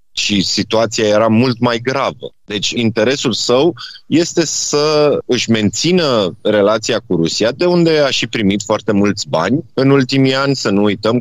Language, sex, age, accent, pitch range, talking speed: Romanian, male, 30-49, native, 95-125 Hz, 160 wpm